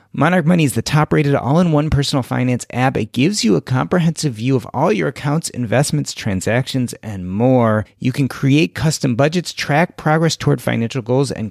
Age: 30-49